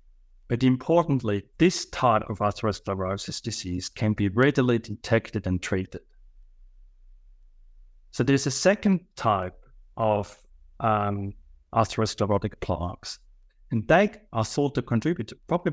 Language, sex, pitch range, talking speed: English, male, 95-120 Hz, 115 wpm